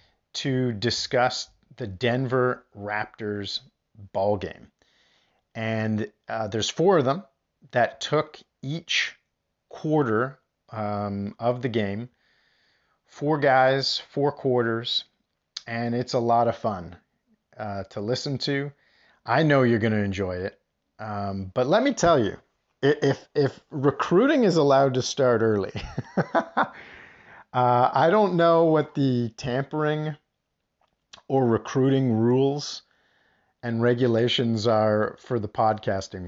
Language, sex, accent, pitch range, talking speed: English, male, American, 105-130 Hz, 115 wpm